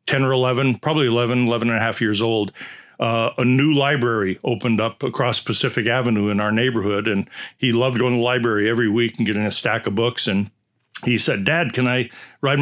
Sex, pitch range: male, 110-130 Hz